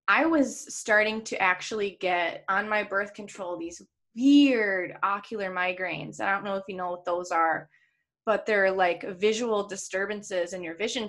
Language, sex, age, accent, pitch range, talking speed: English, female, 20-39, American, 180-220 Hz, 170 wpm